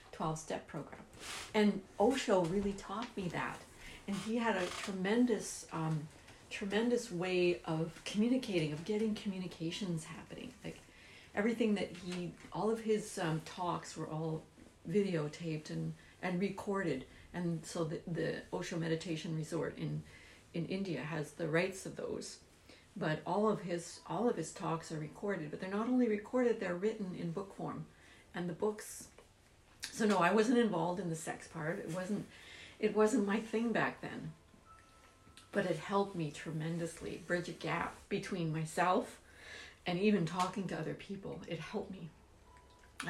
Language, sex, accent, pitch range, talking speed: English, female, American, 160-210 Hz, 155 wpm